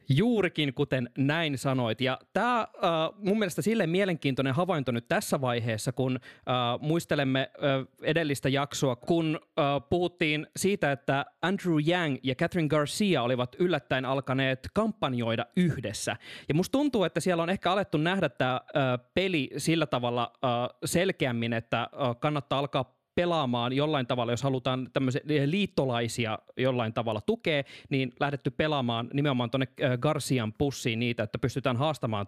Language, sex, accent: Finnish, male, native